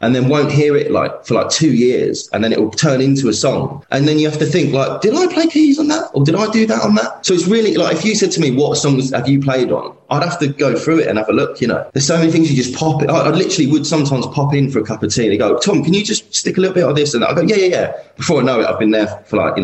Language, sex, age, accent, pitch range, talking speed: English, male, 20-39, British, 105-150 Hz, 345 wpm